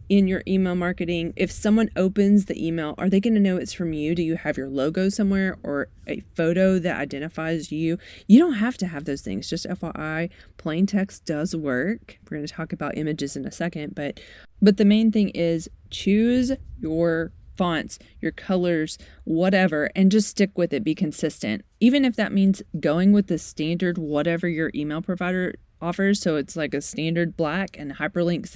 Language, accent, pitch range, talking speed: English, American, 165-200 Hz, 185 wpm